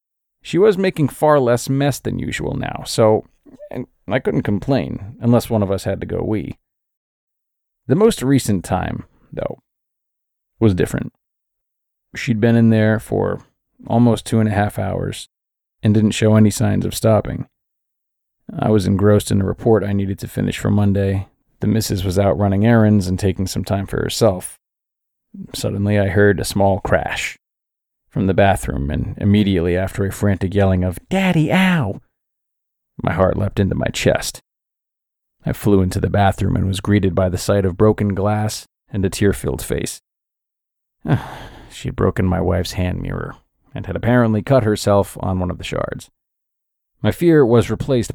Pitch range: 95-120 Hz